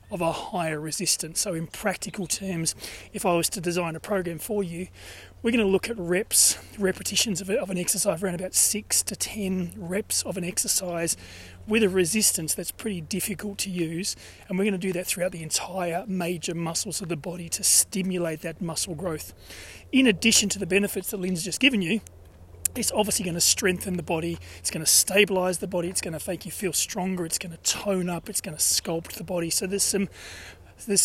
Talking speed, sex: 205 wpm, male